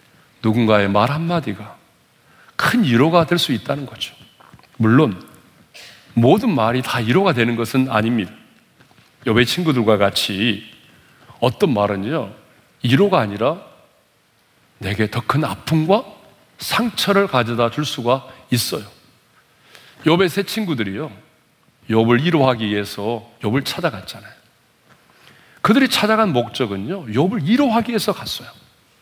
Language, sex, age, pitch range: Korean, male, 40-59, 110-180 Hz